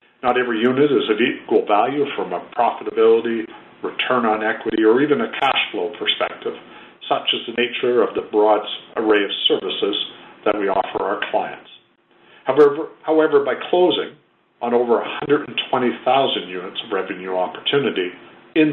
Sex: male